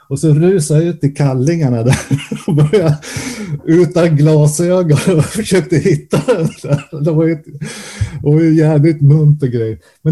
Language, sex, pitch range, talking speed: Swedish, male, 120-160 Hz, 155 wpm